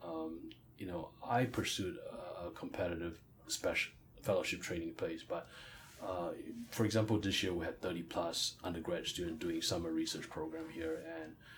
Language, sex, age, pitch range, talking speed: English, male, 30-49, 90-120 Hz, 150 wpm